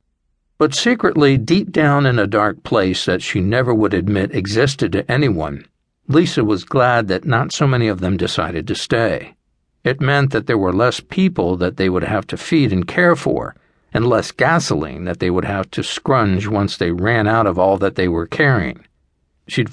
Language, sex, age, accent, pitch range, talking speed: English, male, 60-79, American, 90-125 Hz, 195 wpm